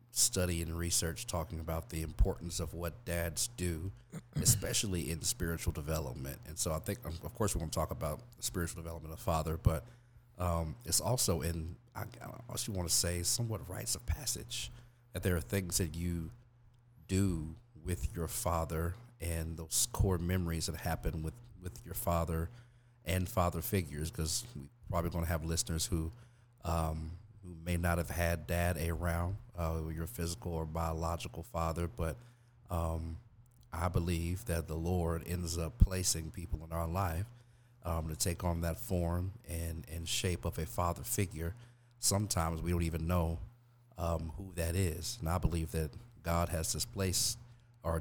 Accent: American